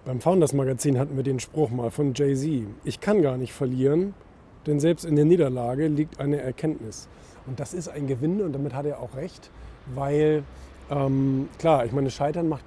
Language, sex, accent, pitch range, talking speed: German, male, German, 135-165 Hz, 190 wpm